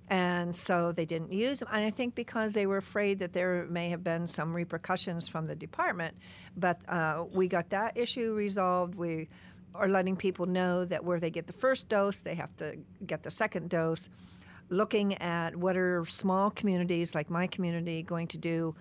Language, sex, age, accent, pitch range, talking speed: English, female, 50-69, American, 160-190 Hz, 195 wpm